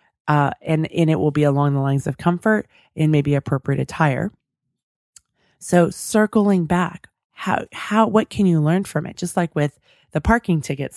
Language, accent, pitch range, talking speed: English, American, 140-170 Hz, 175 wpm